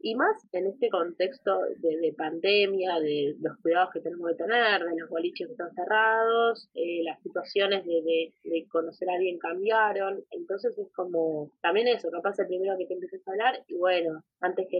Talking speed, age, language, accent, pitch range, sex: 200 wpm, 20-39, Spanish, Argentinian, 160-200 Hz, female